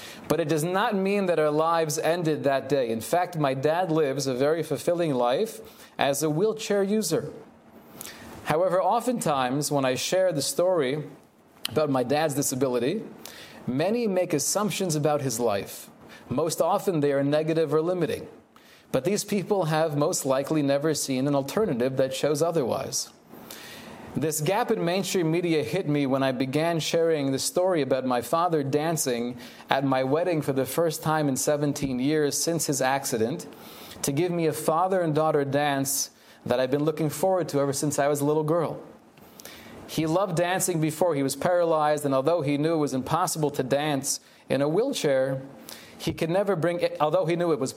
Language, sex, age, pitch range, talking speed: English, male, 40-59, 140-170 Hz, 175 wpm